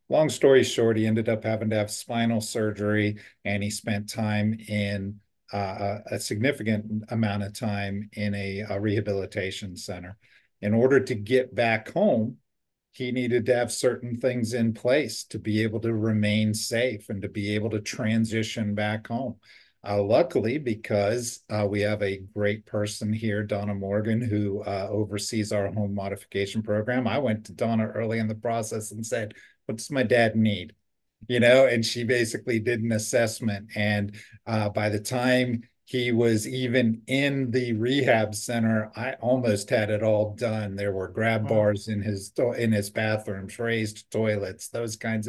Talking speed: 170 wpm